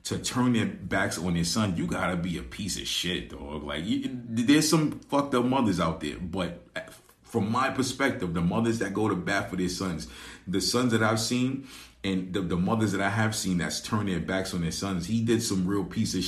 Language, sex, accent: English, male, American